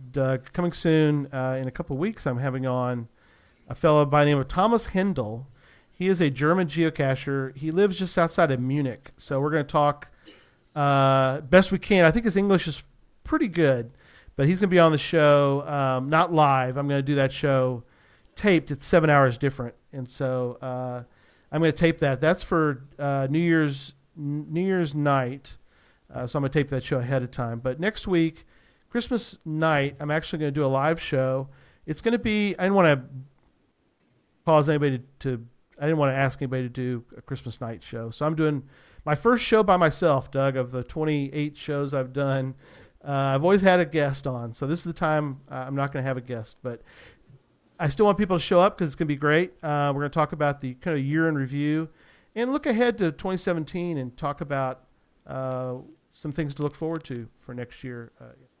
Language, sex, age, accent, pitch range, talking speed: English, male, 40-59, American, 130-165 Hz, 220 wpm